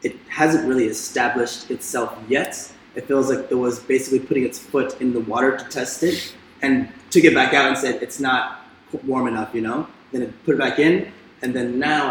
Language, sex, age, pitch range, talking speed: Bulgarian, male, 20-39, 115-135 Hz, 215 wpm